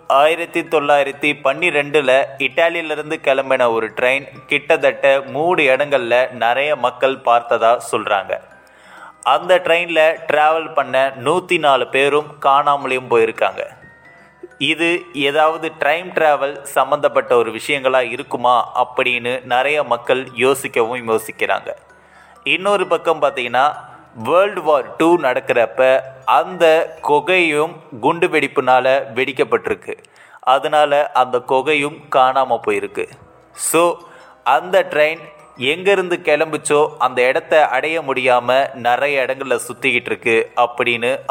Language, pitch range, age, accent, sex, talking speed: Tamil, 125-155 Hz, 20-39, native, male, 95 wpm